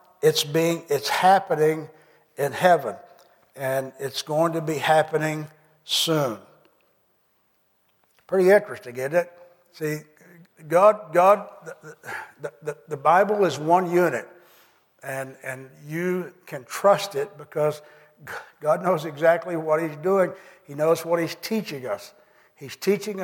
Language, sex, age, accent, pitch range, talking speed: English, male, 60-79, American, 150-180 Hz, 125 wpm